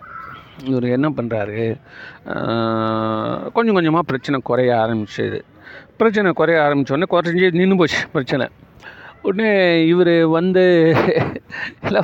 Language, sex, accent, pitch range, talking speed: Tamil, male, native, 130-175 Hz, 105 wpm